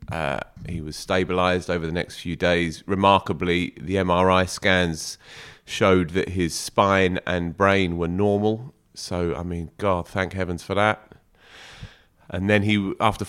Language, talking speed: English, 150 wpm